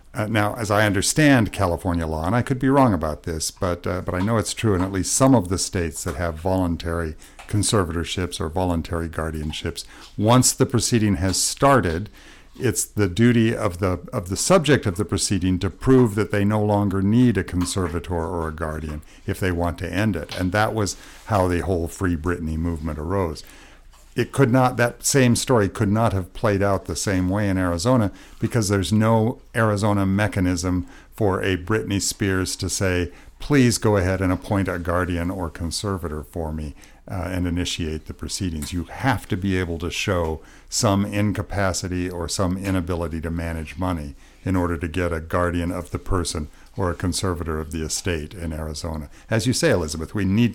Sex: male